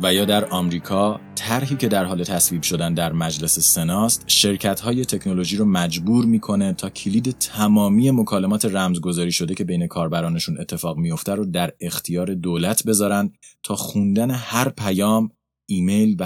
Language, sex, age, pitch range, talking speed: Persian, male, 30-49, 85-115 Hz, 150 wpm